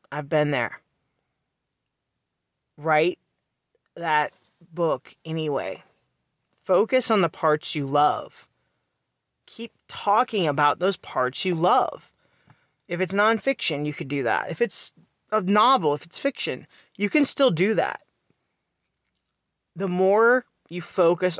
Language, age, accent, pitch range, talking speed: English, 30-49, American, 155-205 Hz, 120 wpm